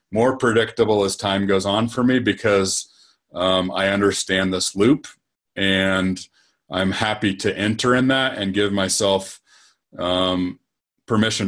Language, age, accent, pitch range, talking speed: English, 40-59, American, 100-130 Hz, 135 wpm